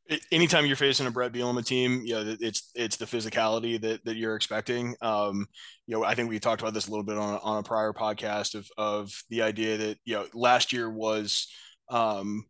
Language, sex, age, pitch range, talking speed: English, male, 20-39, 105-115 Hz, 220 wpm